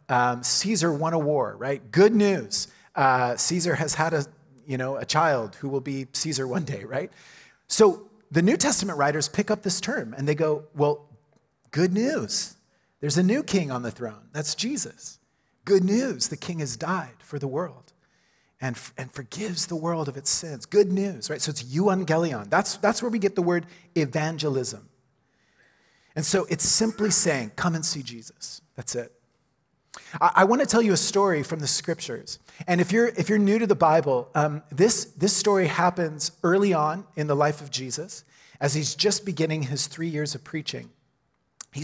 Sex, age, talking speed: male, 40-59, 190 wpm